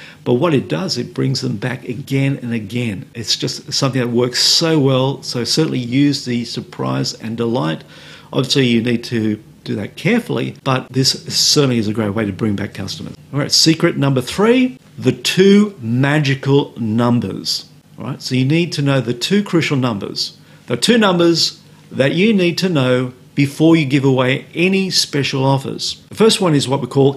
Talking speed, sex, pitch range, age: 190 wpm, male, 120-160 Hz, 50-69